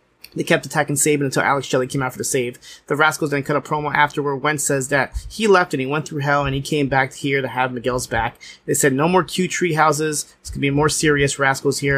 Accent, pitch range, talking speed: American, 135-155 Hz, 270 wpm